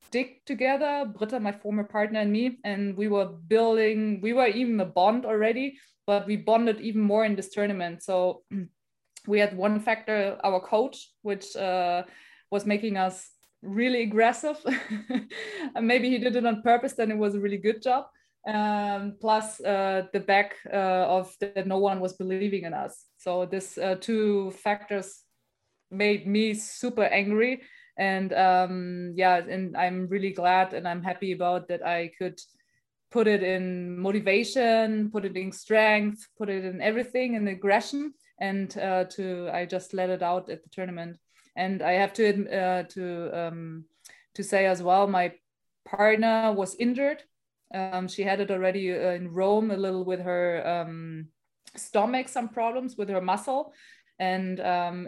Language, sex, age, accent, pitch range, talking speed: English, female, 20-39, German, 185-220 Hz, 165 wpm